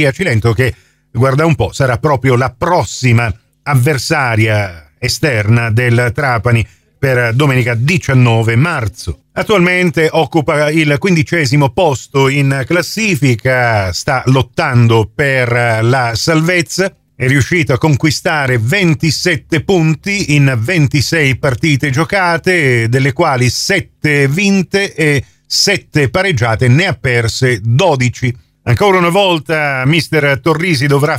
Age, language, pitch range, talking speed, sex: 40-59, Italian, 125-160 Hz, 110 wpm, male